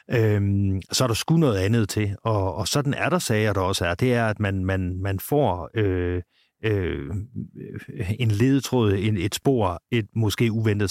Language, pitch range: Danish, 95-115 Hz